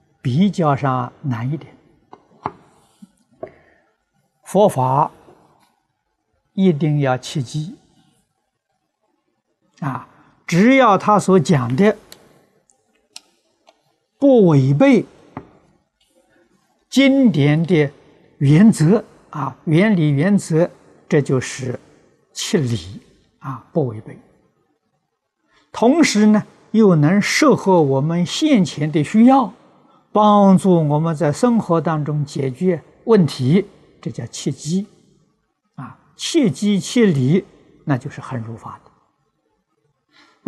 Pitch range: 150-210 Hz